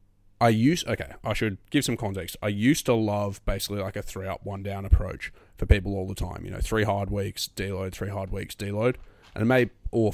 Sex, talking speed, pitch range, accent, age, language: male, 220 wpm, 95-105 Hz, Australian, 20-39, English